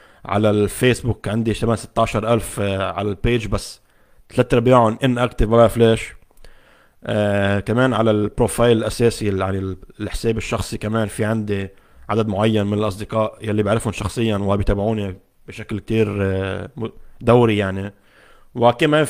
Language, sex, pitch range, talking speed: Arabic, male, 105-120 Hz, 115 wpm